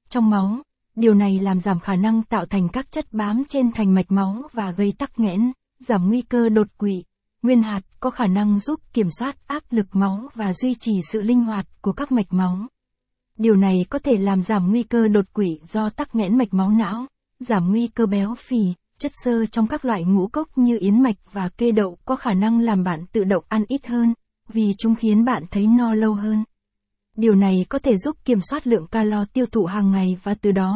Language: Vietnamese